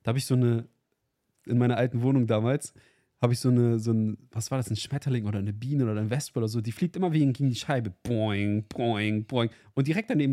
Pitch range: 110-135 Hz